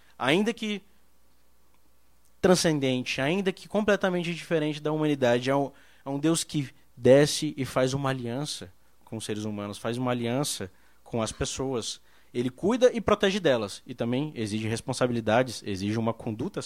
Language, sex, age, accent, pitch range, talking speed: Portuguese, male, 20-39, Brazilian, 115-165 Hz, 150 wpm